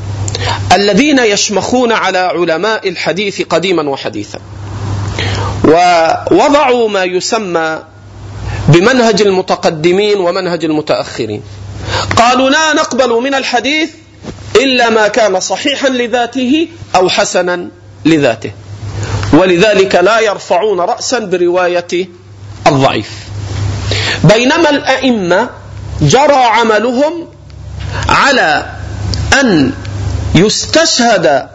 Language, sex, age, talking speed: Arabic, male, 40-59, 75 wpm